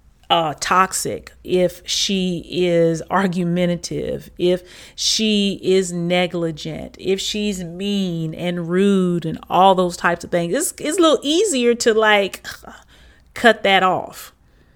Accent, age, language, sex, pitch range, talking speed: American, 30-49, English, female, 165-205 Hz, 130 wpm